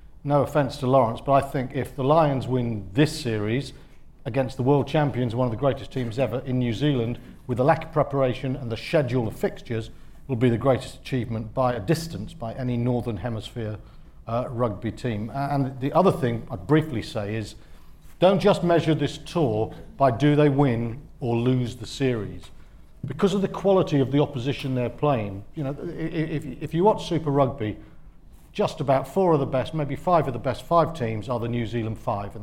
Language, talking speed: English, 200 wpm